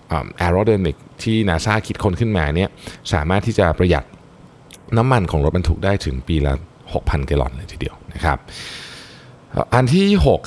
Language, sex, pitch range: Thai, male, 75-95 Hz